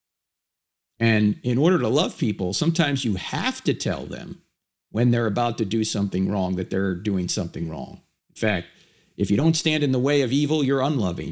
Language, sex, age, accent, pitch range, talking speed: English, male, 50-69, American, 115-185 Hz, 195 wpm